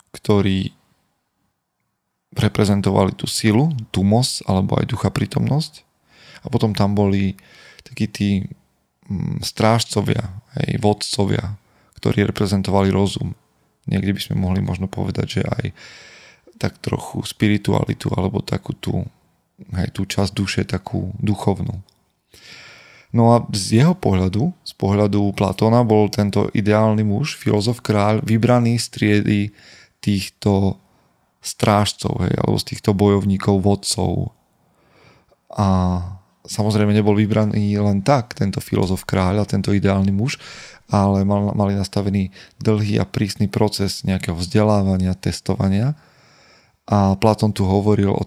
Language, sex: Slovak, male